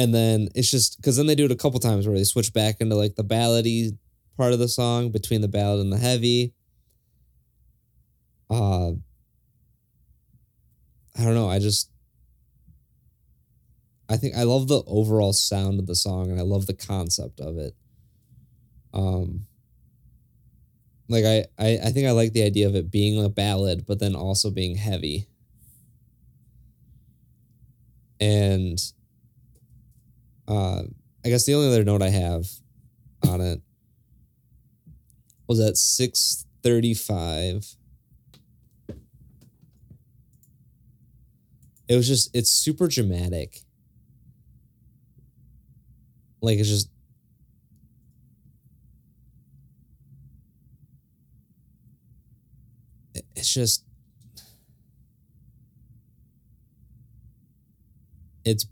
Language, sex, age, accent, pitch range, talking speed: English, male, 20-39, American, 100-120 Hz, 100 wpm